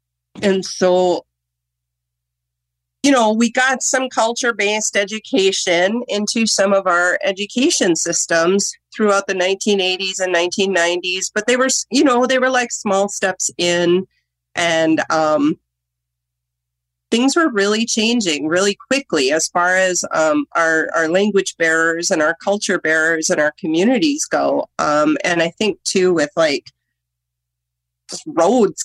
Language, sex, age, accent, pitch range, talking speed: English, female, 30-49, American, 150-205 Hz, 130 wpm